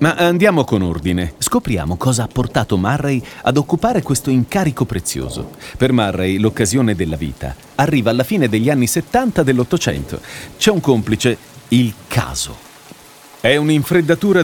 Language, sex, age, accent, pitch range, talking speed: Italian, male, 40-59, native, 110-165 Hz, 135 wpm